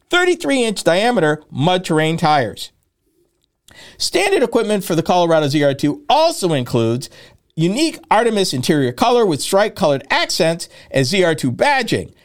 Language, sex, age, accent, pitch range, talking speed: English, male, 50-69, American, 150-240 Hz, 120 wpm